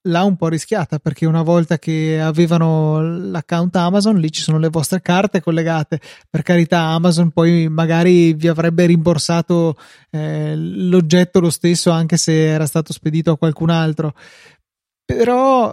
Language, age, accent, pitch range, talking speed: Italian, 20-39, native, 160-175 Hz, 150 wpm